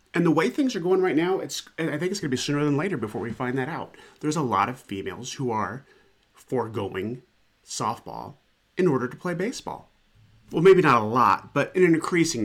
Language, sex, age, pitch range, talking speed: English, male, 30-49, 100-130 Hz, 220 wpm